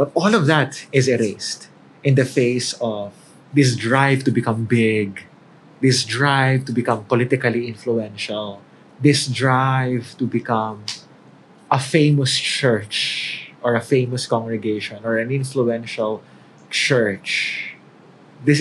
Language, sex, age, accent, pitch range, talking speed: Filipino, male, 20-39, native, 110-135 Hz, 120 wpm